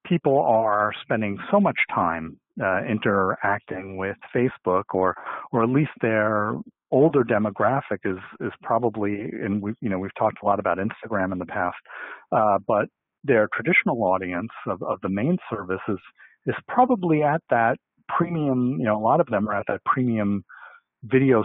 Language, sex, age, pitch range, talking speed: English, male, 40-59, 100-125 Hz, 165 wpm